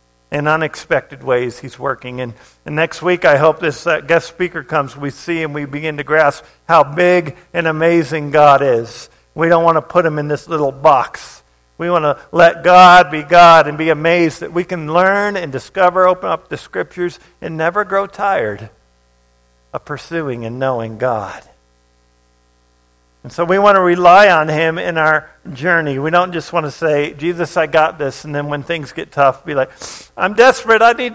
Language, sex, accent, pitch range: English, male, American, 120-175 Hz